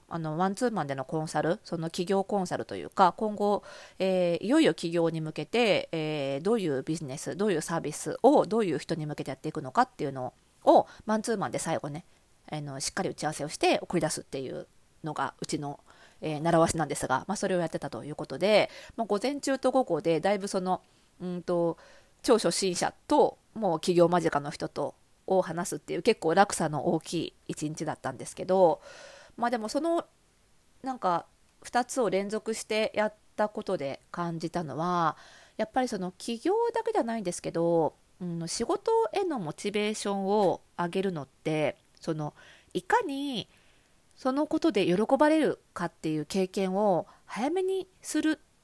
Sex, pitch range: female, 160-220 Hz